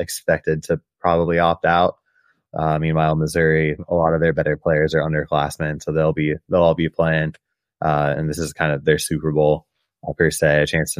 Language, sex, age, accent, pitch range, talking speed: English, male, 20-39, American, 75-85 Hz, 195 wpm